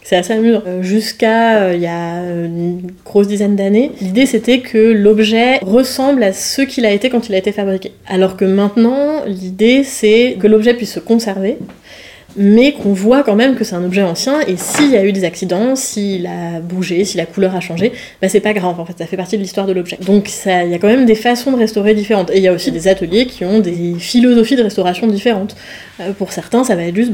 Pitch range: 185-230 Hz